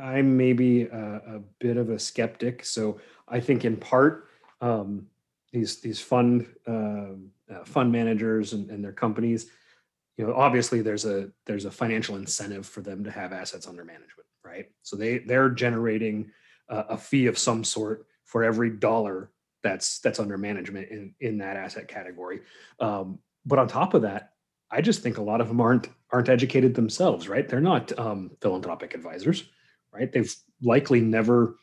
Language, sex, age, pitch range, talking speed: English, male, 30-49, 100-120 Hz, 175 wpm